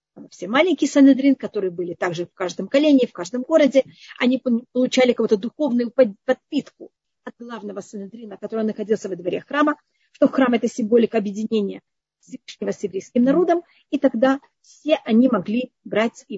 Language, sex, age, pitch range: Russian, female, 40-59, 210-275 Hz